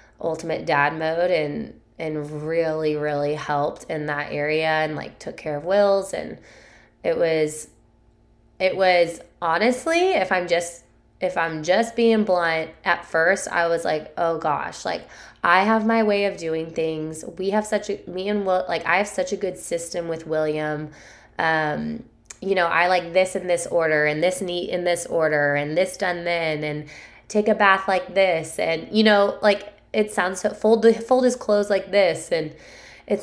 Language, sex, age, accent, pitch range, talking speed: English, female, 20-39, American, 155-205 Hz, 185 wpm